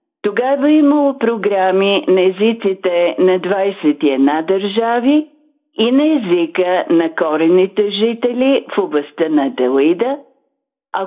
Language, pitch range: Bulgarian, 170-250 Hz